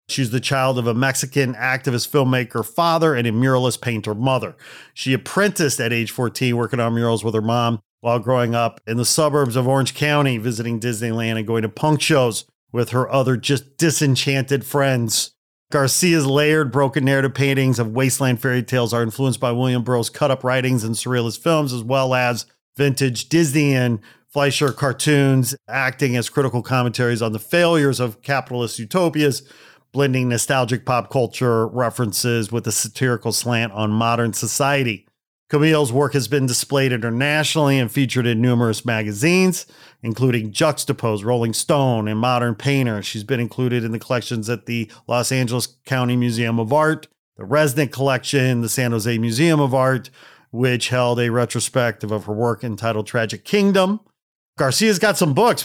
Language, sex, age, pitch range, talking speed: English, male, 40-59, 120-140 Hz, 165 wpm